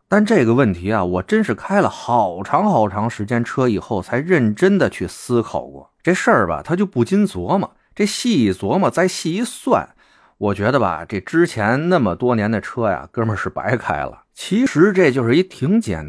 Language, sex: Chinese, male